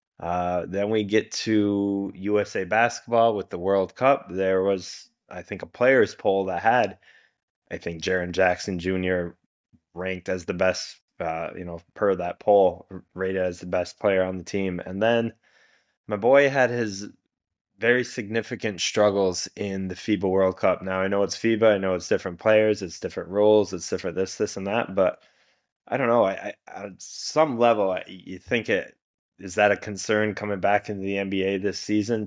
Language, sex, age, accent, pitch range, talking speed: English, male, 20-39, American, 90-105 Hz, 185 wpm